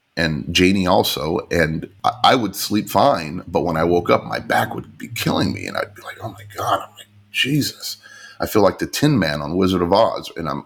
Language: English